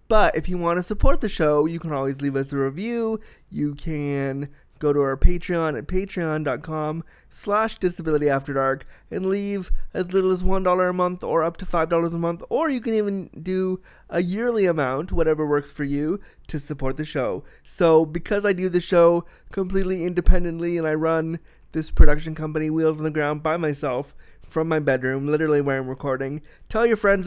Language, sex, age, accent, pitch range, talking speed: English, male, 20-39, American, 145-180 Hz, 185 wpm